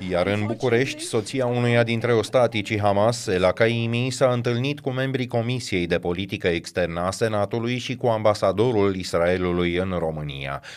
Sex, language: male, Romanian